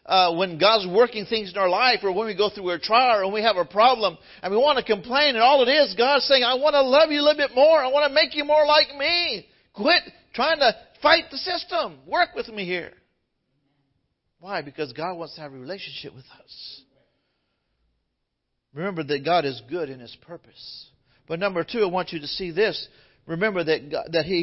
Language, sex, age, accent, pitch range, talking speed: English, male, 50-69, American, 155-250 Hz, 225 wpm